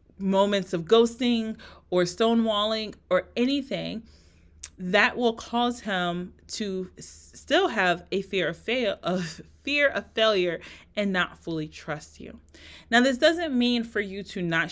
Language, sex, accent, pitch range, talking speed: English, female, American, 160-205 Hz, 130 wpm